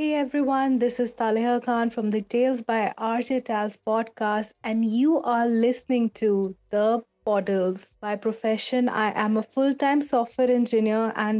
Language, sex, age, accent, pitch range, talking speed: Hindi, female, 30-49, native, 220-255 Hz, 160 wpm